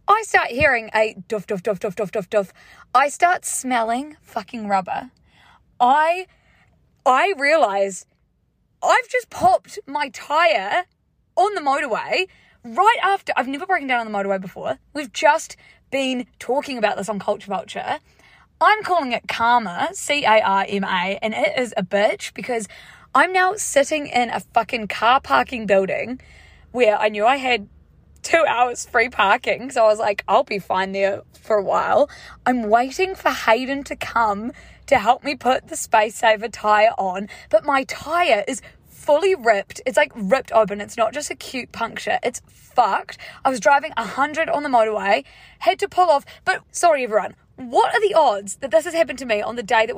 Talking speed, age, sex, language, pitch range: 175 wpm, 20-39, female, English, 215-300 Hz